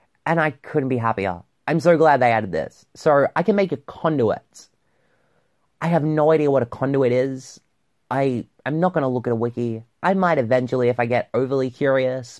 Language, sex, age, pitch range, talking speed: English, male, 30-49, 125-170 Hz, 200 wpm